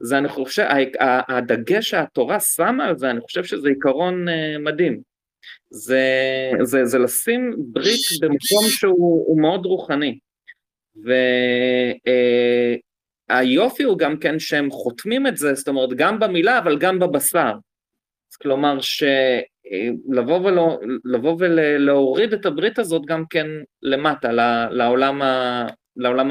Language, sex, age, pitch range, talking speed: Hebrew, male, 30-49, 130-180 Hz, 105 wpm